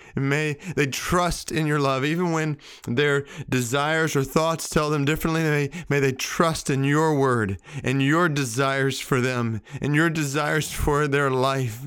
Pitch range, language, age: 105-135 Hz, English, 30-49